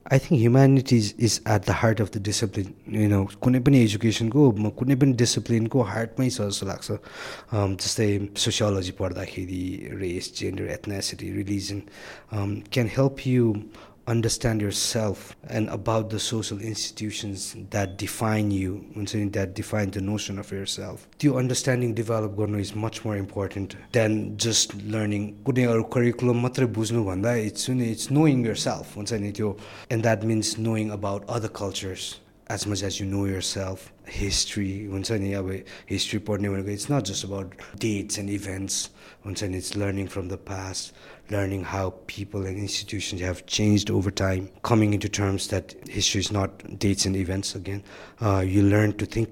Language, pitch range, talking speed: English, 100-115 Hz, 135 wpm